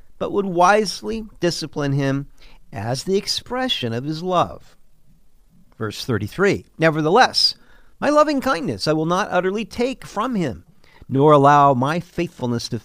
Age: 50-69